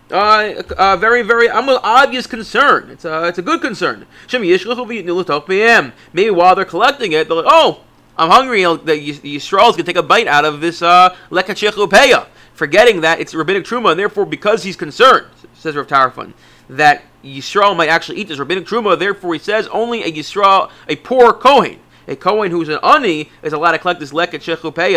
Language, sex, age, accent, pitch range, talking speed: English, male, 30-49, American, 150-205 Hz, 190 wpm